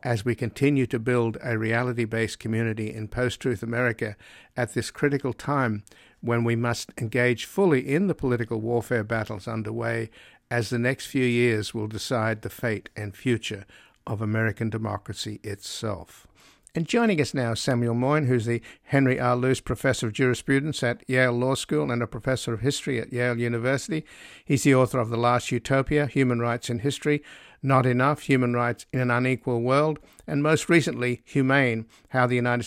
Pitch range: 115-130 Hz